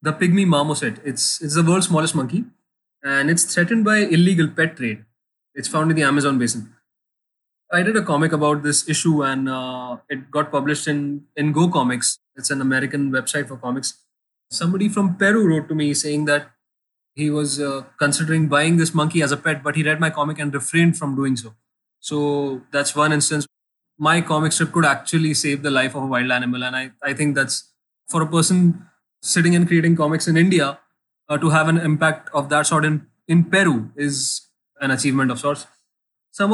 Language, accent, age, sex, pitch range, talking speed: English, Indian, 20-39, male, 140-170 Hz, 195 wpm